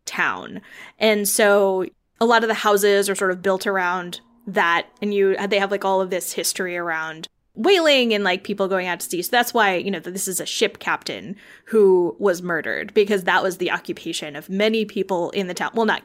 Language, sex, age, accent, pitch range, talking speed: English, female, 20-39, American, 190-240 Hz, 215 wpm